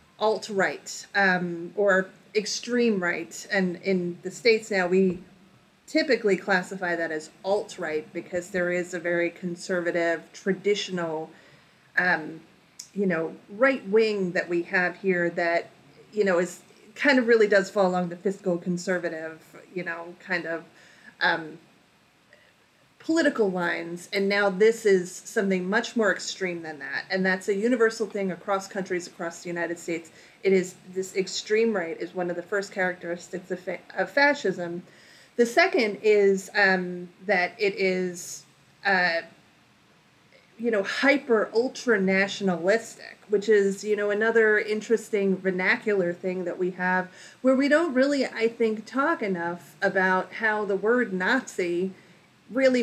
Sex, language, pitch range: female, English, 175-210 Hz